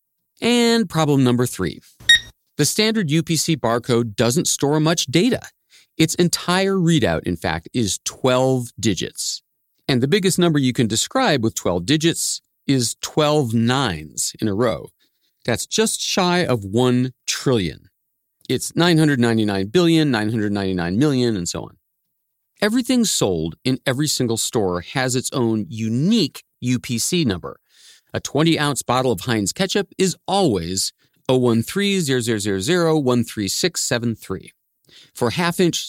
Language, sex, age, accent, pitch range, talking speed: English, male, 40-59, American, 110-170 Hz, 120 wpm